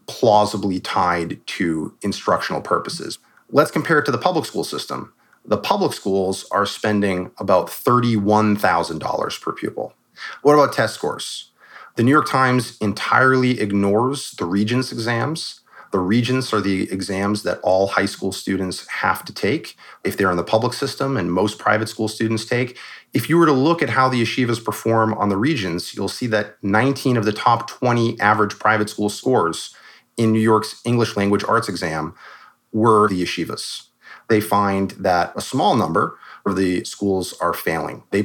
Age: 30-49